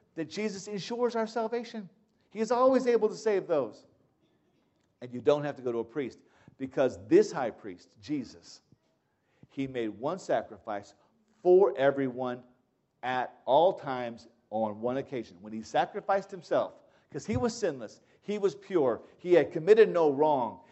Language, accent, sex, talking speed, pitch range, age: English, American, male, 155 wpm, 145-205 Hz, 50-69